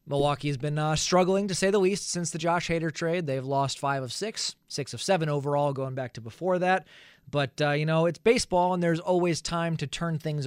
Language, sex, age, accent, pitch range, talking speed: English, male, 20-39, American, 140-180 Hz, 235 wpm